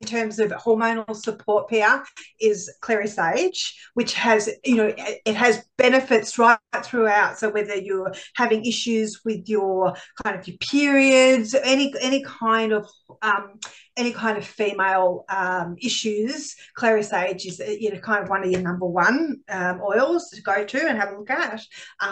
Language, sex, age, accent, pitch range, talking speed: English, female, 40-59, Australian, 195-245 Hz, 170 wpm